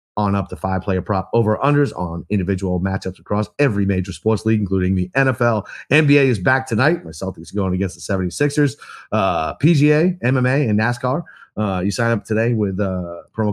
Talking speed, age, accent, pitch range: 175 wpm, 30-49, American, 100-120 Hz